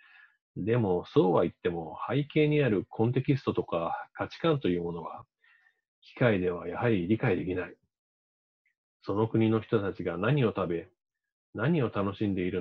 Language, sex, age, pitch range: Japanese, male, 40-59, 100-150 Hz